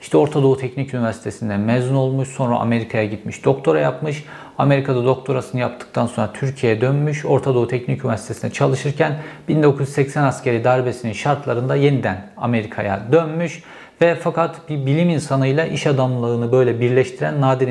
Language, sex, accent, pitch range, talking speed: Turkish, male, native, 120-145 Hz, 135 wpm